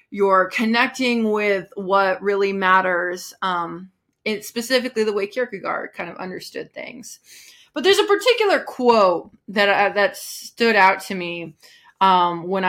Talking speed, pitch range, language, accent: 140 wpm, 185-235 Hz, English, American